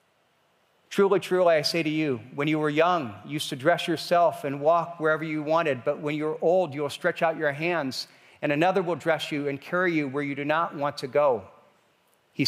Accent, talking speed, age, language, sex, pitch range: American, 215 wpm, 50-69, English, male, 145-185 Hz